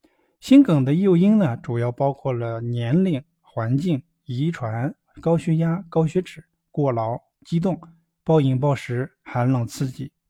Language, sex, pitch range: Chinese, male, 125-170 Hz